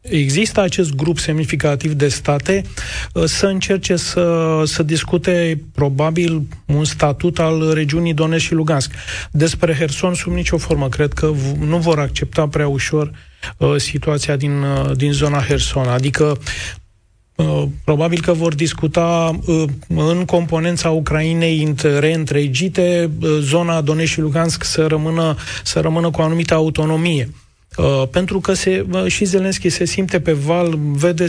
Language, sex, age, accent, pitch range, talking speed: Romanian, male, 30-49, native, 150-170 Hz, 130 wpm